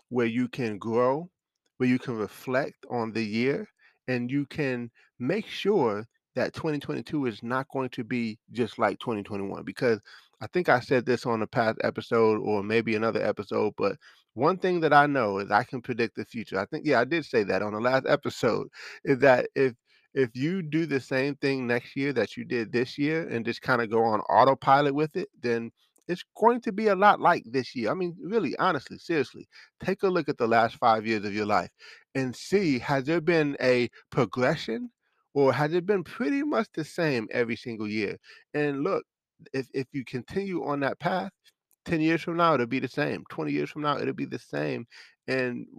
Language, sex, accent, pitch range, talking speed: English, male, American, 115-155 Hz, 205 wpm